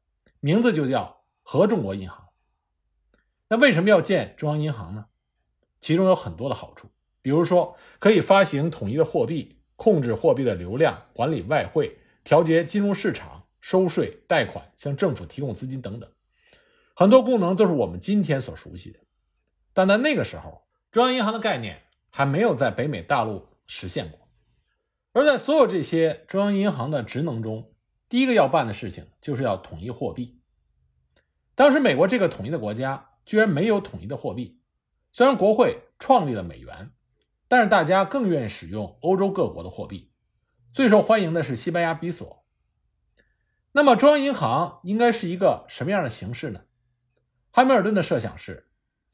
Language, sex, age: Chinese, male, 50-69